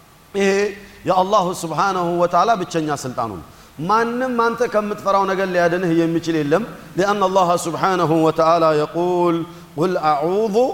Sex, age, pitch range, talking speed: male, 40-59, 160-200 Hz, 110 wpm